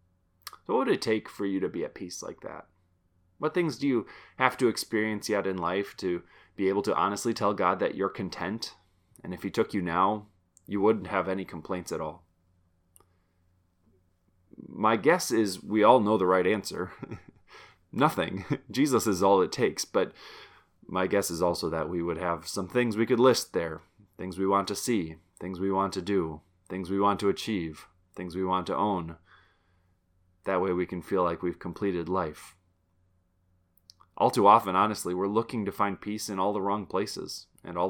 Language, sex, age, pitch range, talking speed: English, male, 20-39, 90-100 Hz, 190 wpm